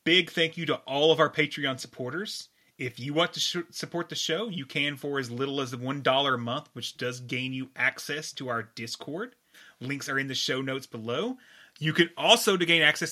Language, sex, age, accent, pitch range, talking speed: English, male, 30-49, American, 140-185 Hz, 210 wpm